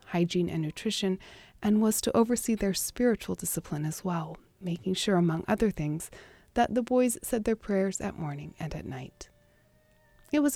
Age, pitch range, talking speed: 30-49, 170-225 Hz, 170 wpm